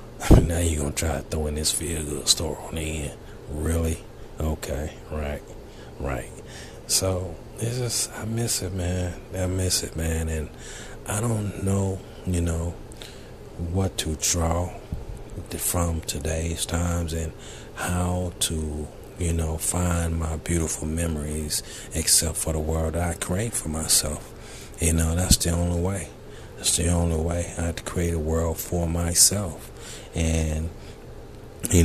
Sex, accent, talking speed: male, American, 150 wpm